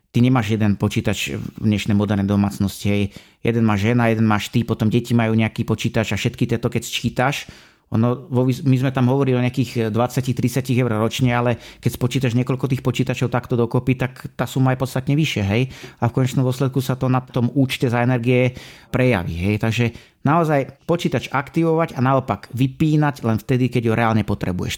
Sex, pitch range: male, 115-135 Hz